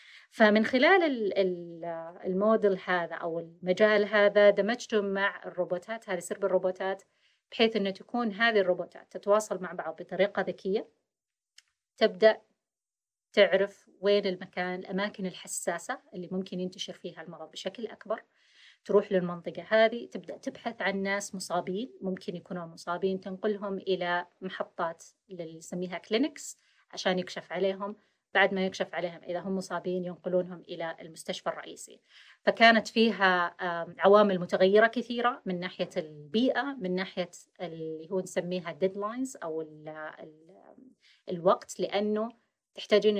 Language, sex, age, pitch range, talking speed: Arabic, female, 30-49, 180-210 Hz, 125 wpm